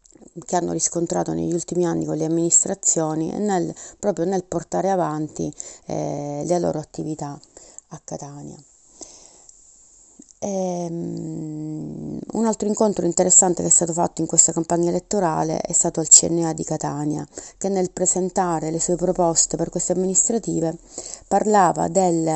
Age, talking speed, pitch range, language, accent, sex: 30-49, 135 wpm, 165-185 Hz, Italian, native, female